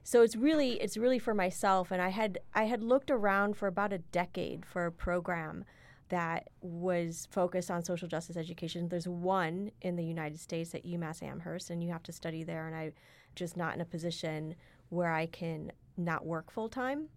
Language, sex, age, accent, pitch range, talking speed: English, female, 30-49, American, 170-195 Hz, 195 wpm